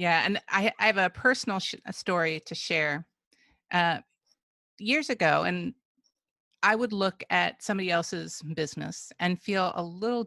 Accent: American